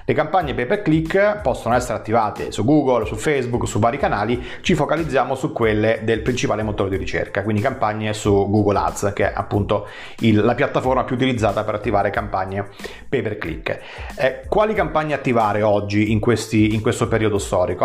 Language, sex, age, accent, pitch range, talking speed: Italian, male, 30-49, native, 110-140 Hz, 160 wpm